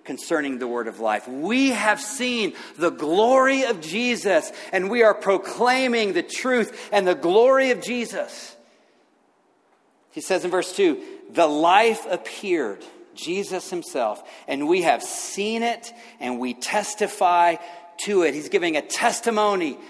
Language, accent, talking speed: English, American, 140 wpm